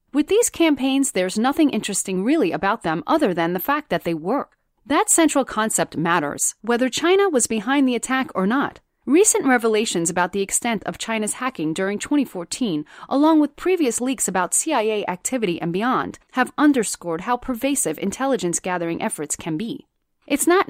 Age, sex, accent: 30-49, female, American